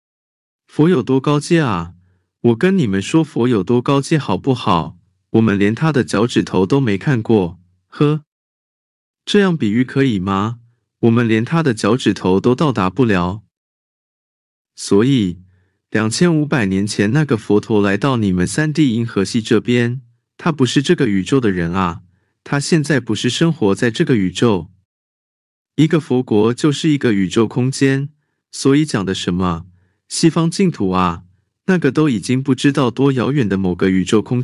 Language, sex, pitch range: Chinese, male, 95-140 Hz